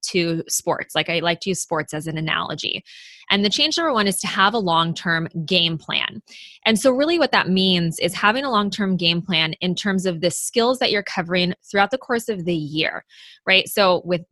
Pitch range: 175-225 Hz